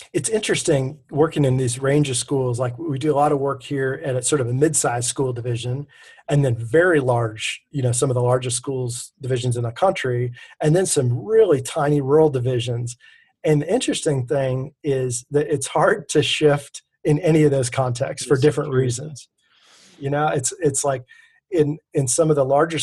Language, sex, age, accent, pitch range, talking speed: English, male, 40-59, American, 125-150 Hz, 195 wpm